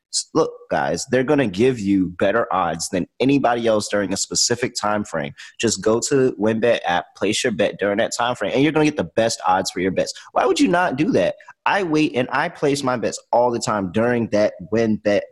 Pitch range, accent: 105-145 Hz, American